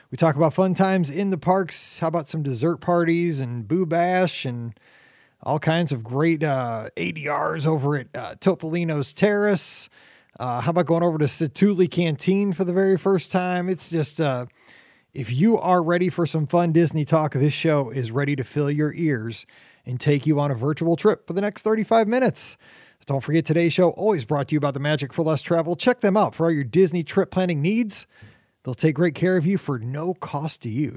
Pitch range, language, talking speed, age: 150-195 Hz, English, 210 wpm, 30-49